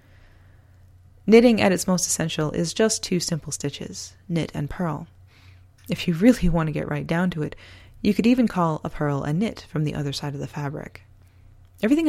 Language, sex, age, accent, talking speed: English, female, 20-39, American, 195 wpm